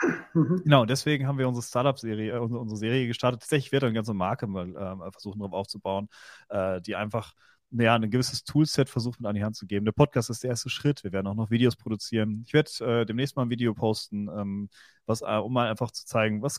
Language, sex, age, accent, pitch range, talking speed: German, male, 30-49, German, 100-125 Hz, 230 wpm